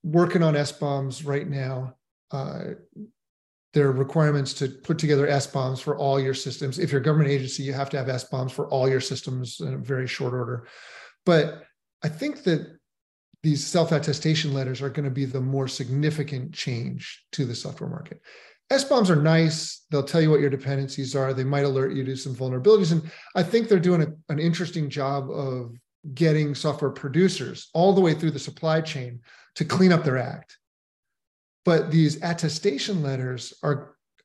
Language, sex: English, male